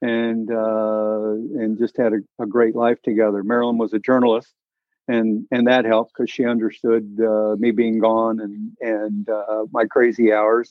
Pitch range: 110-120 Hz